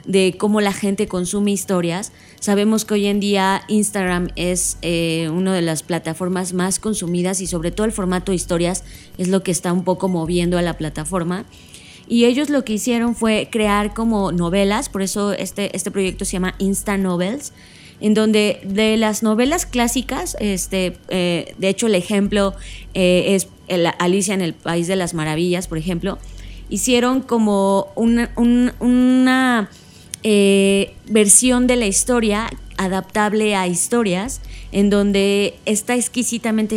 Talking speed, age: 155 wpm, 20-39